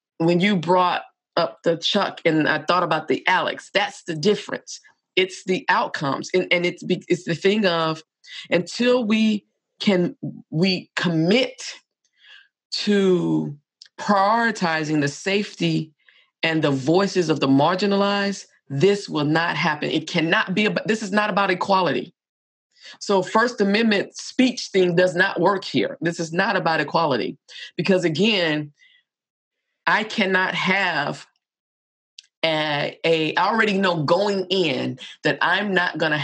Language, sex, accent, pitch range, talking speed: English, female, American, 155-200 Hz, 140 wpm